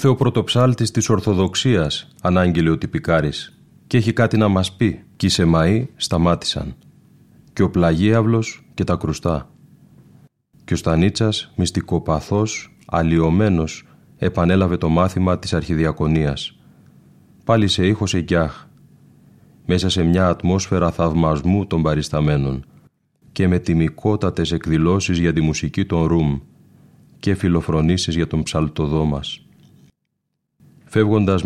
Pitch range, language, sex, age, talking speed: 85-100 Hz, Greek, male, 30-49, 115 wpm